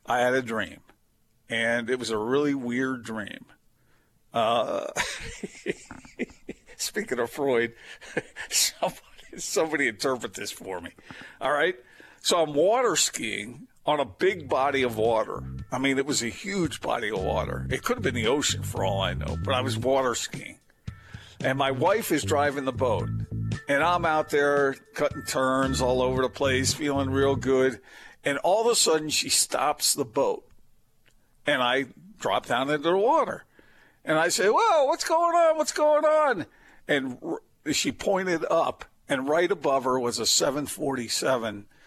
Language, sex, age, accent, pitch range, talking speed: English, male, 50-69, American, 115-145 Hz, 165 wpm